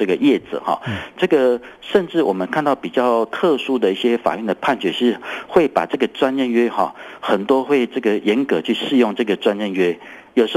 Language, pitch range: Chinese, 105-140 Hz